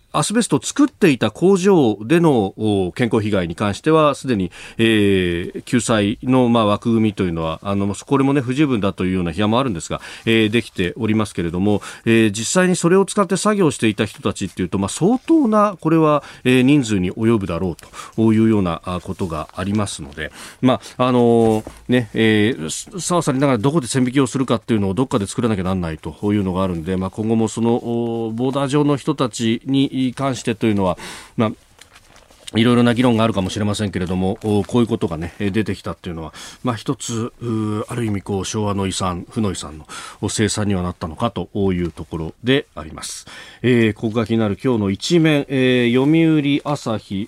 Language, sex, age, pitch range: Japanese, male, 40-59, 100-140 Hz